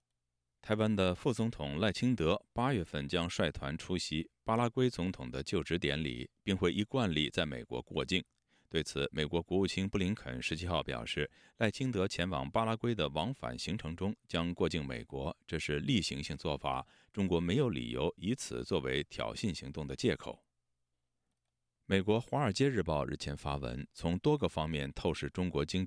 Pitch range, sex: 70-100 Hz, male